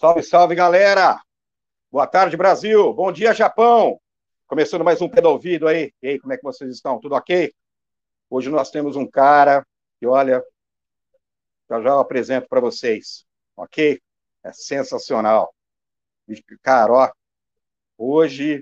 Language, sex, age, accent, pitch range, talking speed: Portuguese, male, 50-69, Brazilian, 125-200 Hz, 130 wpm